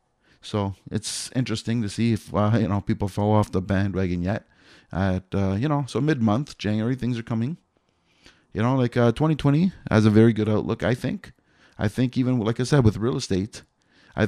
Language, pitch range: English, 95-125 Hz